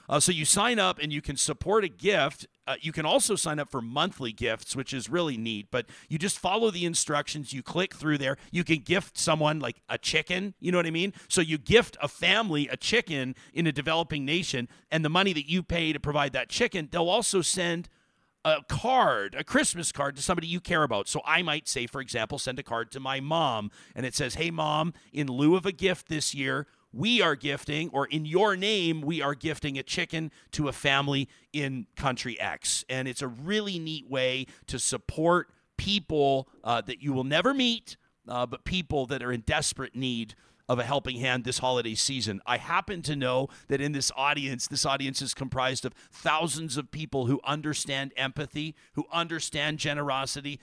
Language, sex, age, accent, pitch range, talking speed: English, male, 40-59, American, 130-165 Hz, 205 wpm